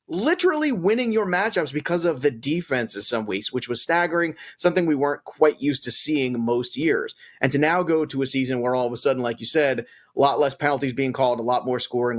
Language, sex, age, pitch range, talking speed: English, male, 30-49, 120-155 Hz, 230 wpm